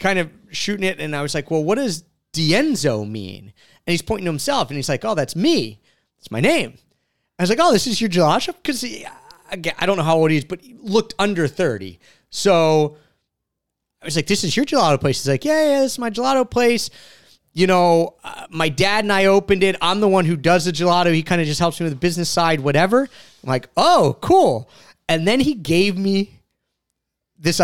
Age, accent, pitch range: 30-49, American, 135-190 Hz